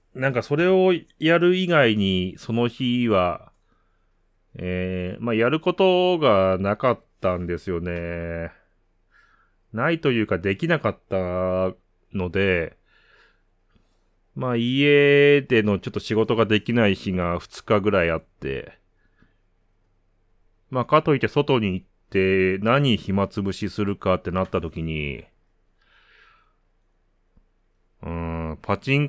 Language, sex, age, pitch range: Japanese, male, 30-49, 90-125 Hz